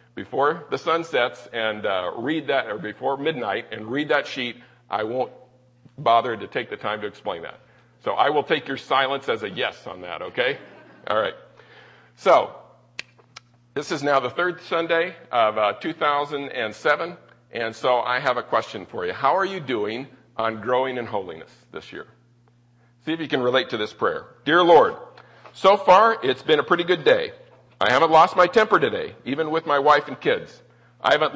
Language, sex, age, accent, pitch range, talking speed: English, male, 50-69, American, 130-170 Hz, 190 wpm